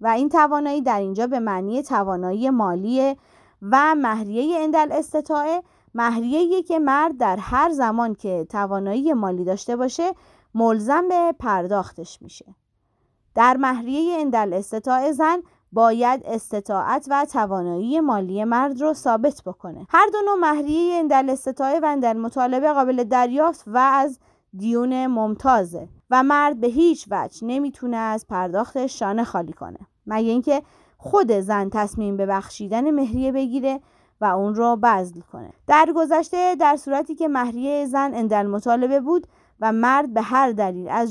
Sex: female